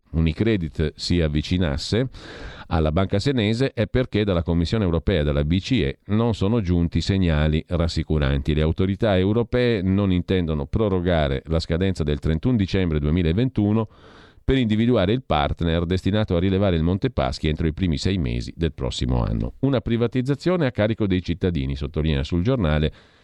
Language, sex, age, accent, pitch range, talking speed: Italian, male, 50-69, native, 80-105 Hz, 150 wpm